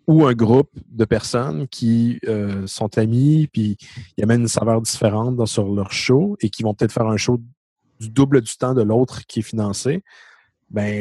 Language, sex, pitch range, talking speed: French, male, 110-130 Hz, 195 wpm